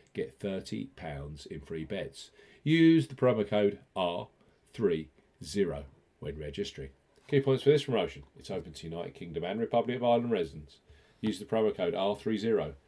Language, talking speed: English, 150 wpm